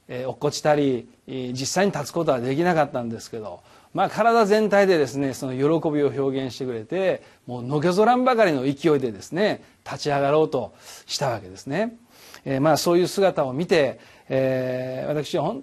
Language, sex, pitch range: Japanese, male, 140-195 Hz